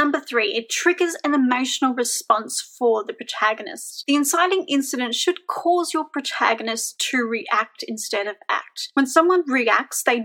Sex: female